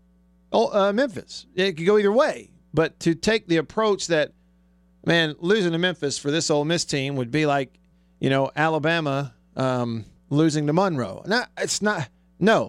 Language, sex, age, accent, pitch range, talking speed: English, male, 40-59, American, 115-175 Hz, 160 wpm